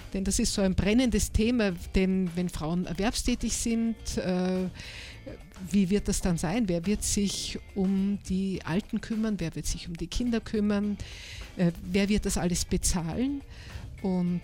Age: 50-69